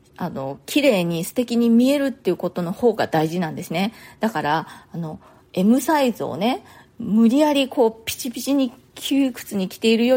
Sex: female